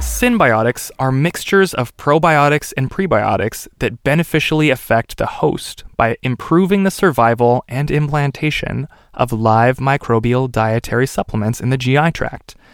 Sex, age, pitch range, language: male, 20-39, 110-145 Hz, English